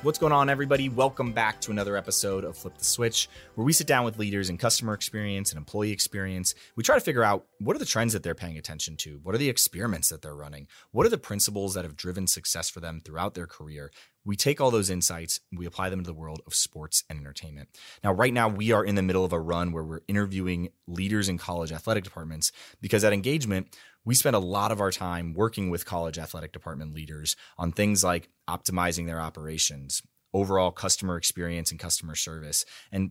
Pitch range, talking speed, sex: 80-105 Hz, 225 wpm, male